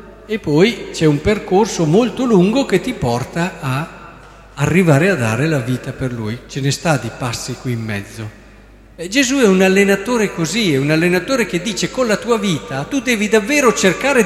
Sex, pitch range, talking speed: male, 120-195 Hz, 185 wpm